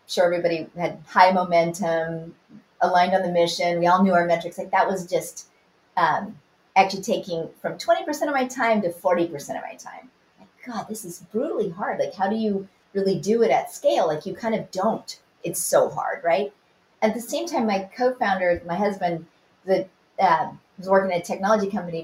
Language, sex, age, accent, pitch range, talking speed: English, female, 40-59, American, 175-230 Hz, 190 wpm